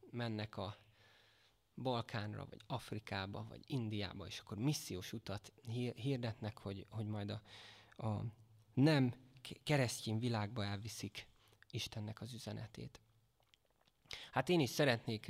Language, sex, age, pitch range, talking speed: Hungarian, male, 20-39, 105-120 Hz, 110 wpm